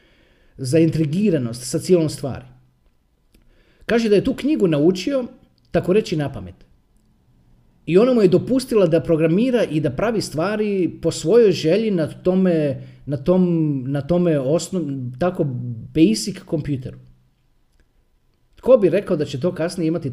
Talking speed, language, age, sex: 140 wpm, Croatian, 40-59, male